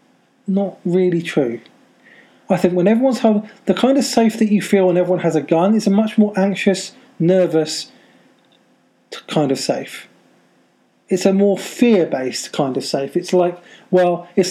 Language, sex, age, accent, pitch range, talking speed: English, male, 40-59, British, 160-205 Hz, 165 wpm